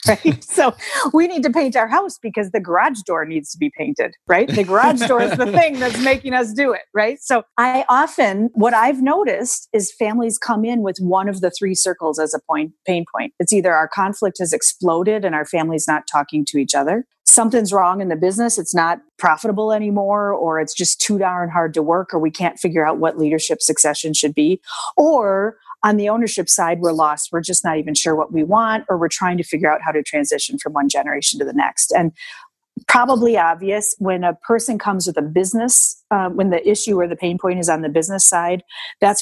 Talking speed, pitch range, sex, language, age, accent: 220 wpm, 160-220 Hz, female, English, 40-59, American